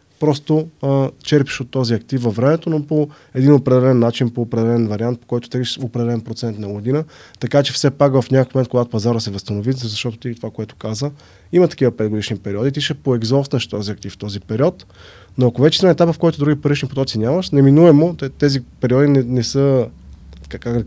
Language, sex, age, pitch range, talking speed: Bulgarian, male, 20-39, 110-145 Hz, 200 wpm